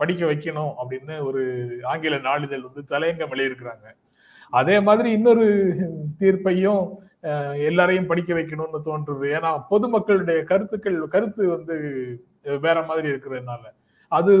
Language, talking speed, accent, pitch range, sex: Tamil, 110 wpm, native, 145-195 Hz, male